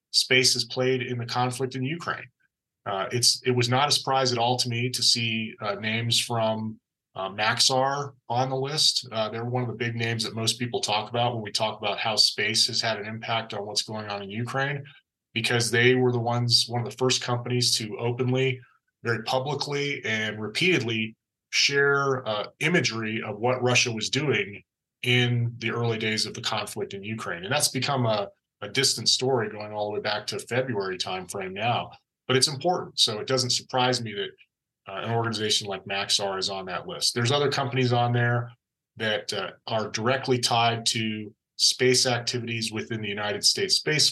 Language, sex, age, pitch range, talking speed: English, male, 30-49, 110-130 Hz, 195 wpm